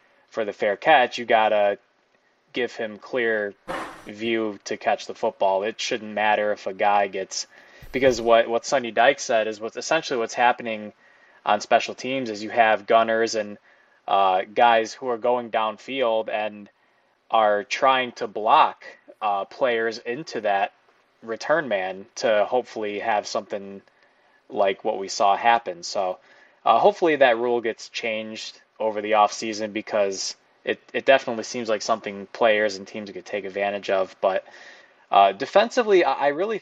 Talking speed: 160 wpm